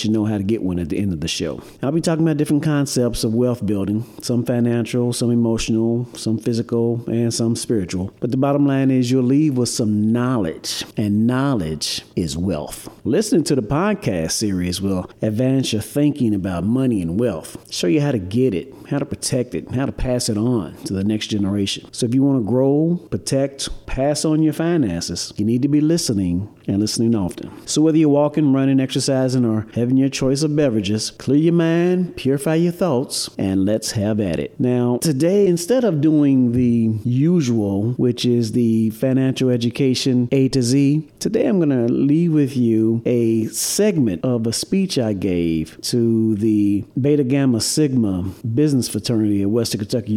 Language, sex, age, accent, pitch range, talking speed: English, male, 40-59, American, 110-140 Hz, 190 wpm